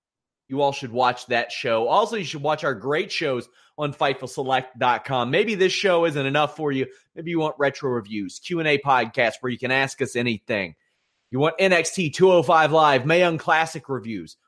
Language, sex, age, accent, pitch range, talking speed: English, male, 30-49, American, 120-160 Hz, 180 wpm